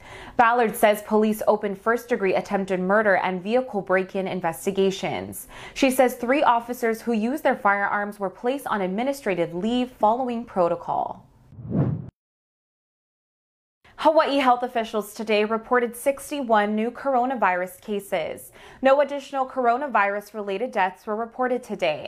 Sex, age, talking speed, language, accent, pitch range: female, 20-39, 115 wpm, English, American, 195-245 Hz